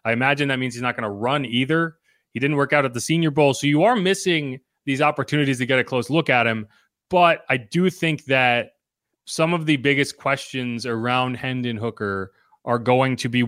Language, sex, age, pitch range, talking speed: English, male, 30-49, 115-135 Hz, 215 wpm